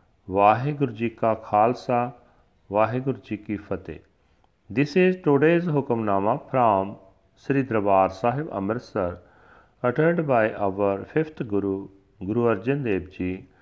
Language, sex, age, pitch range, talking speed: Punjabi, male, 40-59, 95-130 Hz, 115 wpm